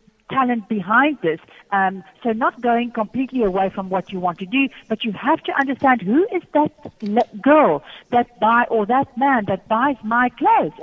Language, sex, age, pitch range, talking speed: English, female, 50-69, 205-265 Hz, 190 wpm